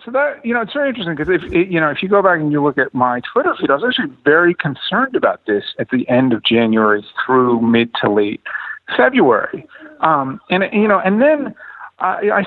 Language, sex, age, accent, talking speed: English, male, 50-69, American, 220 wpm